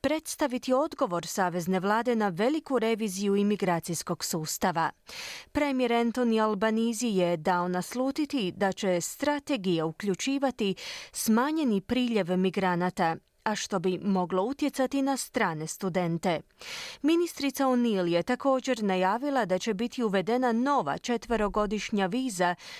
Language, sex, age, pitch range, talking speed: Croatian, female, 30-49, 185-255 Hz, 110 wpm